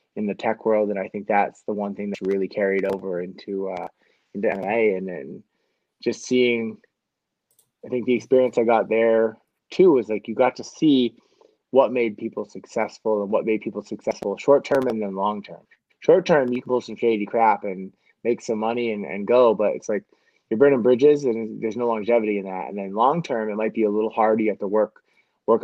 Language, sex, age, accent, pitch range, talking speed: English, male, 20-39, American, 105-120 Hz, 210 wpm